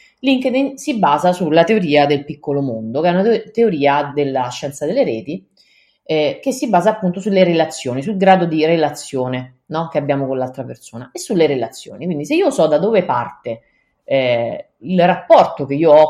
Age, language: 30-49, Italian